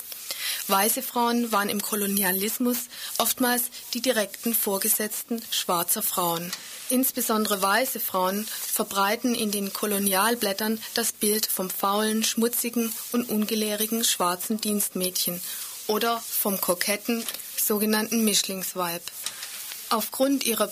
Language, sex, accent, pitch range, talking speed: German, female, German, 195-235 Hz, 100 wpm